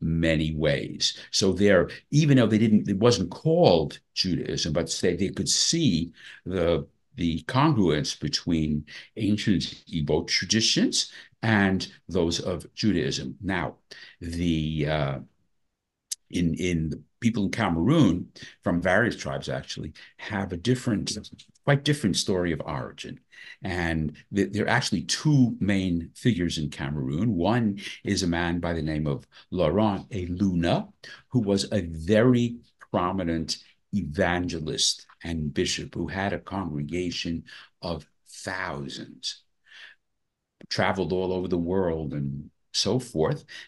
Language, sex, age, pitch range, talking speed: English, male, 60-79, 85-110 Hz, 125 wpm